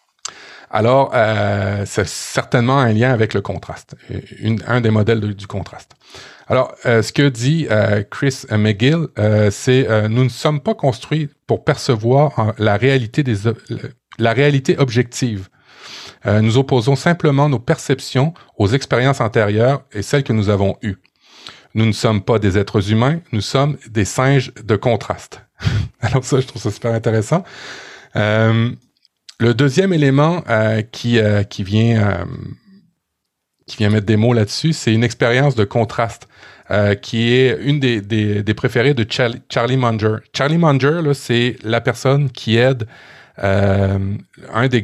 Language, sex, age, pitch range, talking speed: French, male, 40-59, 105-135 Hz, 150 wpm